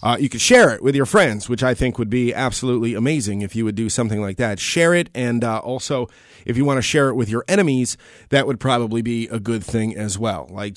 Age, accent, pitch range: 30-49, American, 115-150 Hz